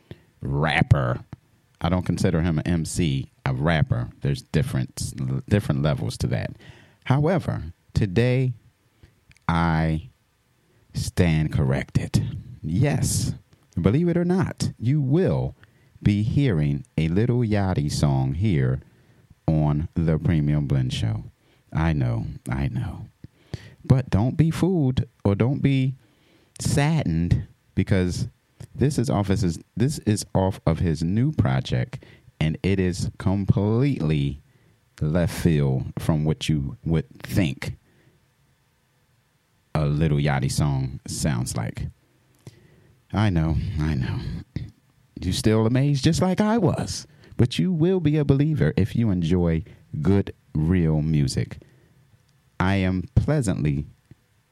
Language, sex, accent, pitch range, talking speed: English, male, American, 80-130 Hz, 120 wpm